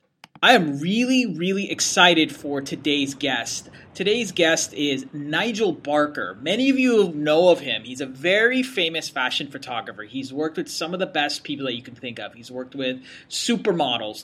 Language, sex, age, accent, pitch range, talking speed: English, male, 30-49, American, 140-180 Hz, 175 wpm